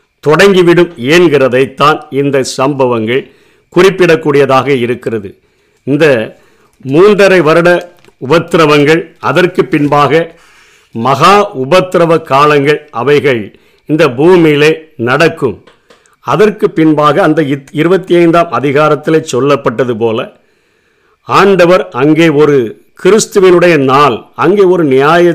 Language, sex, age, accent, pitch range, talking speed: Tamil, male, 50-69, native, 145-175 Hz, 85 wpm